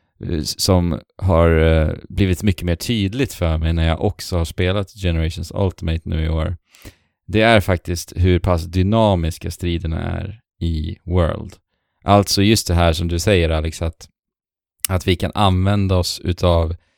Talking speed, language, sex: 150 wpm, Swedish, male